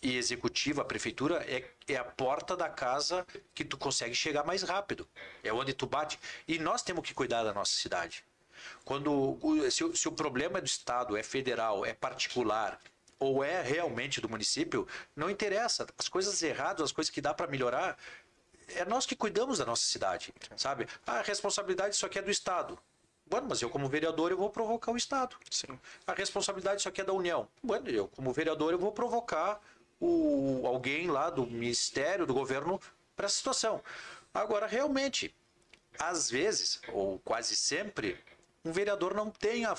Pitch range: 130-205 Hz